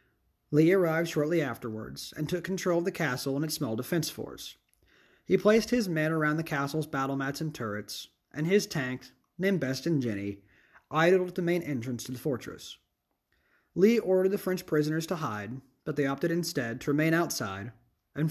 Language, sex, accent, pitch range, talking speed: English, male, American, 130-175 Hz, 185 wpm